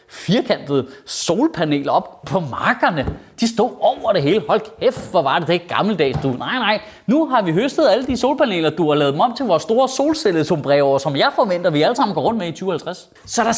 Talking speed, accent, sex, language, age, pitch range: 215 wpm, native, male, Danish, 30-49, 175-250 Hz